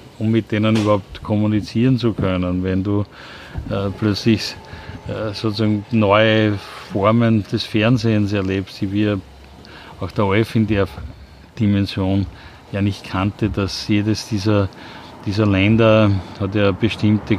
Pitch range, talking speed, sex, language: 95-110 Hz, 130 wpm, male, German